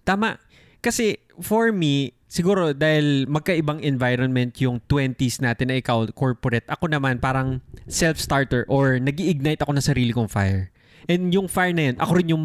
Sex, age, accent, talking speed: male, 20-39, native, 160 wpm